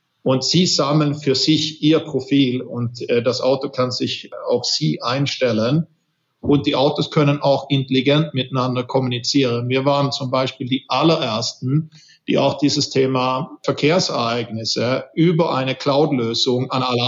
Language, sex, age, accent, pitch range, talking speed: German, male, 50-69, German, 130-150 Hz, 135 wpm